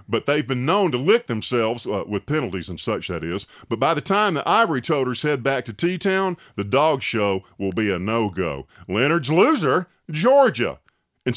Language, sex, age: English, male, 50-69